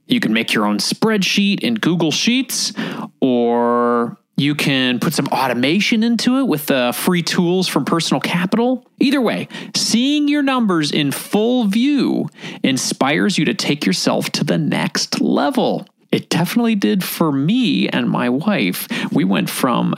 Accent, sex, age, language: American, male, 30-49, English